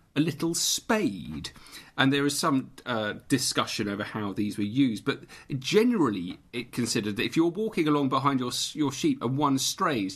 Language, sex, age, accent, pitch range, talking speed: English, male, 40-59, British, 115-150 Hz, 175 wpm